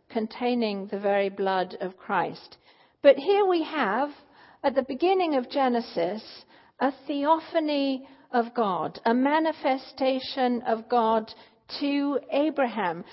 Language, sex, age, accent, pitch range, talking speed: English, female, 50-69, British, 220-285 Hz, 115 wpm